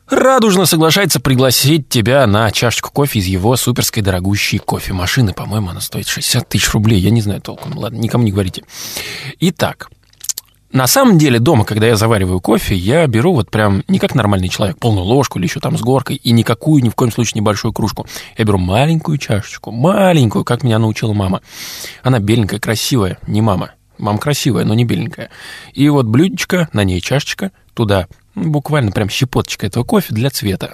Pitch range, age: 105-145 Hz, 20-39